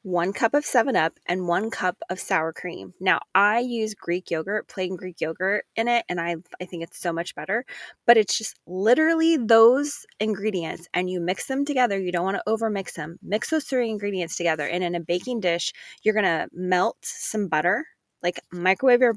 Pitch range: 175-225 Hz